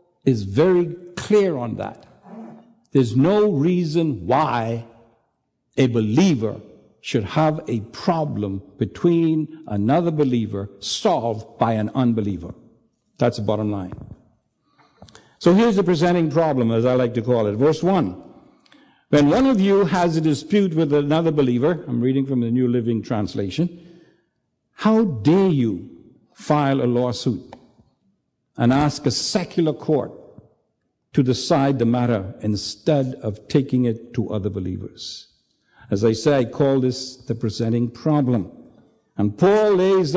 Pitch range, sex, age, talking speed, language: 115-175 Hz, male, 60-79, 135 wpm, English